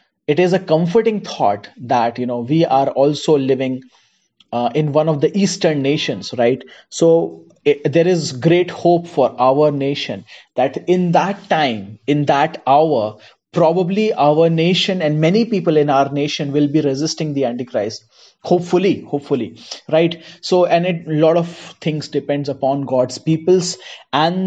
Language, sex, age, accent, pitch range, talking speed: Hindi, male, 30-49, native, 135-170 Hz, 160 wpm